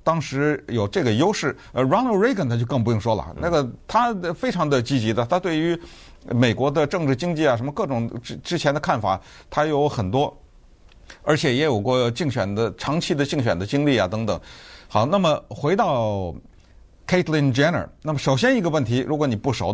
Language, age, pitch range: Chinese, 50-69, 105-150 Hz